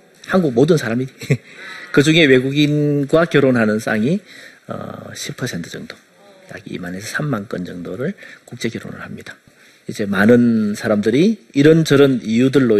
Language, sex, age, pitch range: Korean, male, 40-59, 125-190 Hz